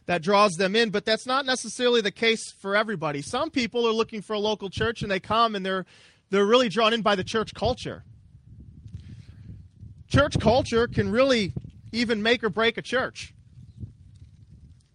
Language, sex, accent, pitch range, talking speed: English, male, American, 150-230 Hz, 175 wpm